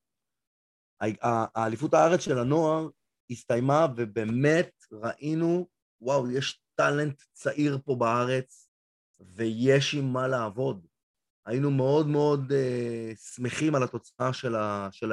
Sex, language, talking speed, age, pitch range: male, Hebrew, 105 wpm, 30-49, 115-140 Hz